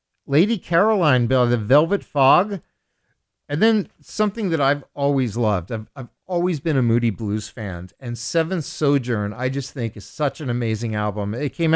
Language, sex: English, male